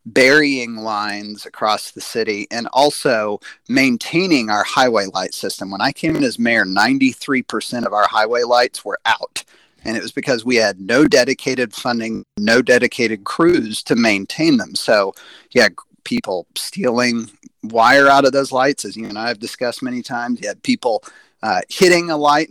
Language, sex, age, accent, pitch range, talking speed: English, male, 40-59, American, 115-160 Hz, 170 wpm